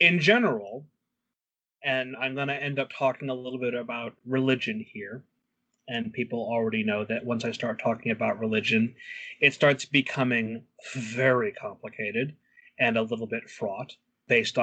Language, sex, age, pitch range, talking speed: English, male, 30-49, 120-170 Hz, 150 wpm